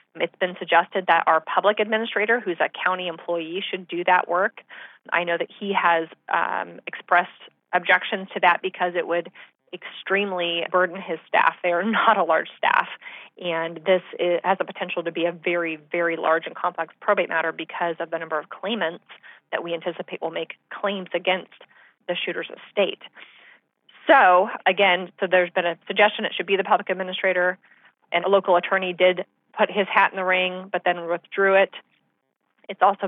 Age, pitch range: 30-49, 170-190 Hz